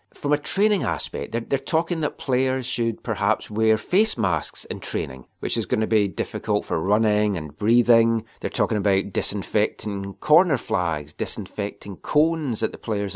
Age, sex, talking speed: 30-49, male, 170 wpm